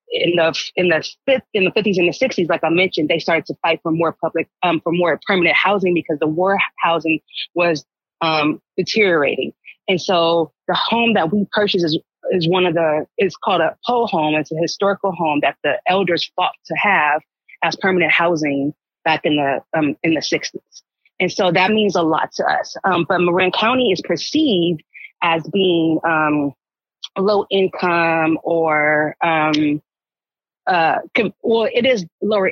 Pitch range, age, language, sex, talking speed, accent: 160-185 Hz, 20-39, English, female, 180 wpm, American